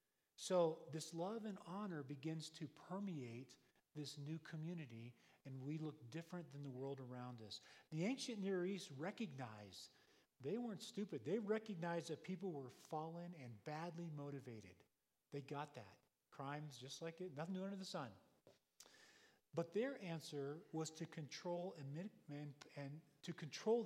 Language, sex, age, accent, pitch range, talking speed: English, male, 40-59, American, 135-180 Hz, 140 wpm